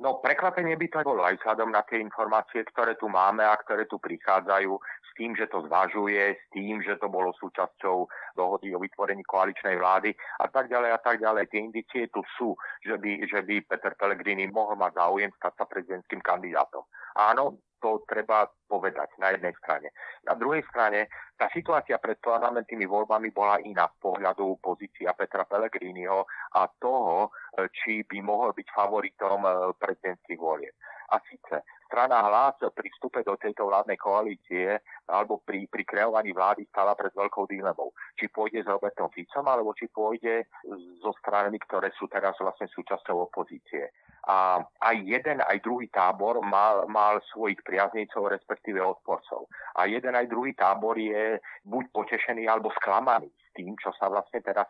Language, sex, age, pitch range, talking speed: Slovak, male, 40-59, 95-110 Hz, 165 wpm